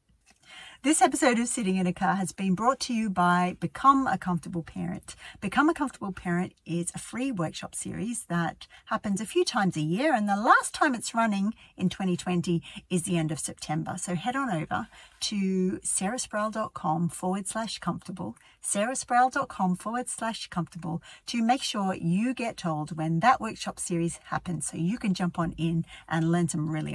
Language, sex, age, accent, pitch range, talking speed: English, female, 50-69, Australian, 175-240 Hz, 180 wpm